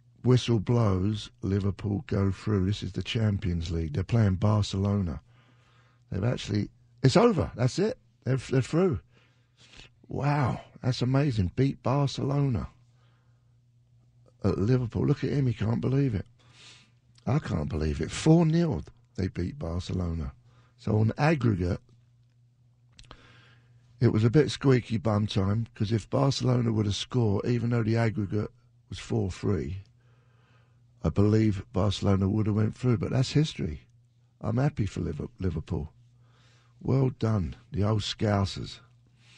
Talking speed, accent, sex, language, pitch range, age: 135 wpm, British, male, English, 100-125 Hz, 50-69